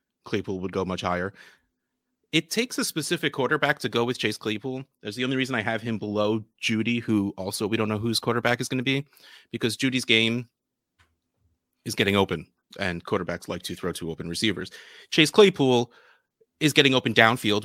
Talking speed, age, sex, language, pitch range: 185 wpm, 30-49, male, English, 95-125 Hz